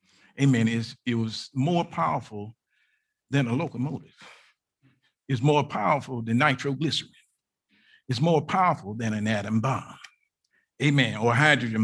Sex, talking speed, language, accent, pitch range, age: male, 125 wpm, English, American, 130-175 Hz, 50-69